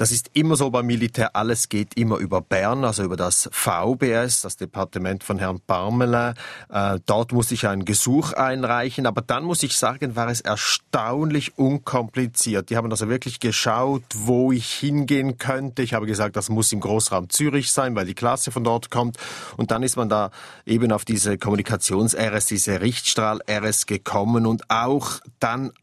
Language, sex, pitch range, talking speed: German, male, 110-135 Hz, 175 wpm